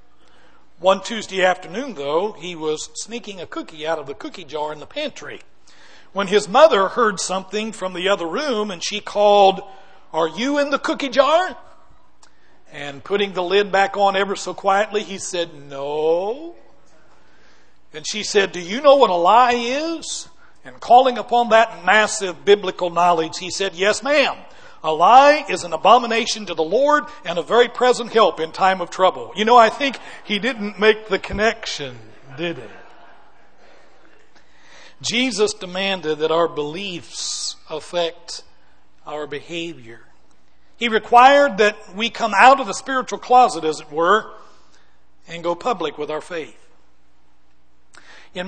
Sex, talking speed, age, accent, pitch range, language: male, 155 wpm, 60-79, American, 165-230 Hz, English